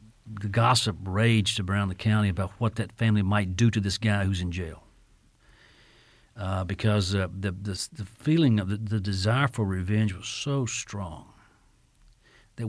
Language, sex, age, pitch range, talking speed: English, male, 50-69, 100-115 Hz, 165 wpm